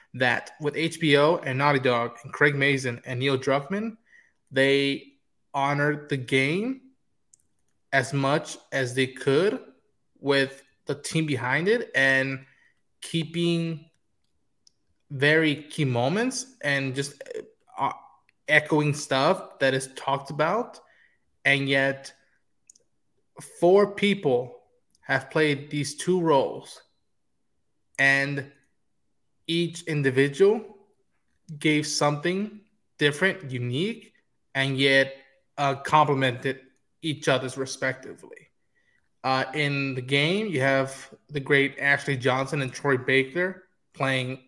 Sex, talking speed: male, 105 wpm